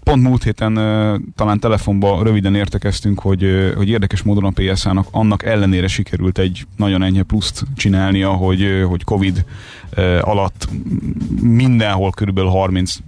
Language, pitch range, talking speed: Hungarian, 95-105 Hz, 130 wpm